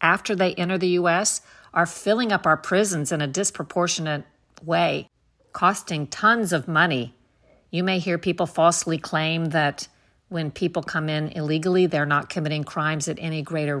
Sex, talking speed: female, 160 wpm